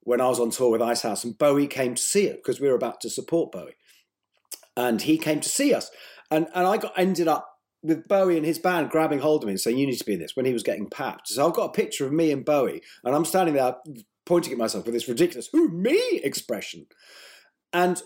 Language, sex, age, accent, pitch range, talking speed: English, male, 40-59, British, 125-180 Hz, 255 wpm